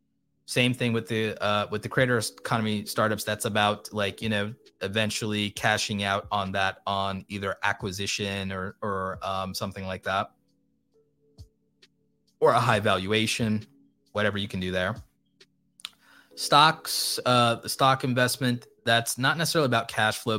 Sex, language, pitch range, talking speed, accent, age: male, English, 100-120 Hz, 145 wpm, American, 20-39